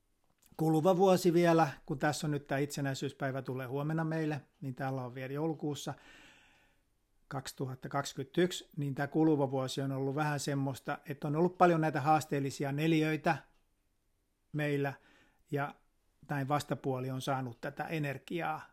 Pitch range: 135-160 Hz